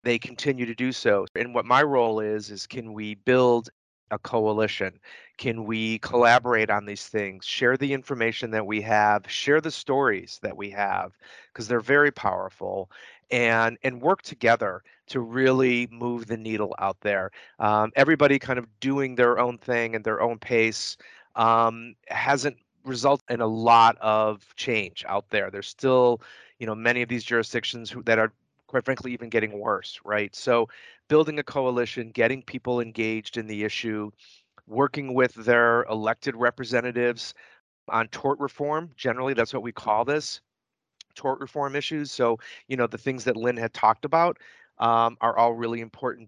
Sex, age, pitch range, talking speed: male, 30-49, 110-130 Hz, 170 wpm